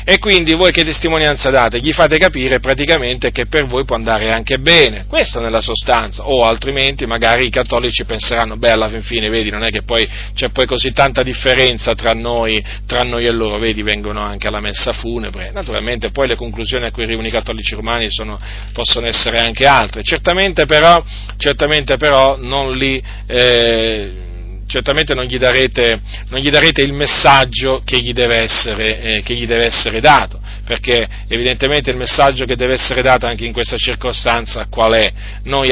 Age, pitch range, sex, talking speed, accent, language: 40-59, 110-130 Hz, male, 180 wpm, native, Italian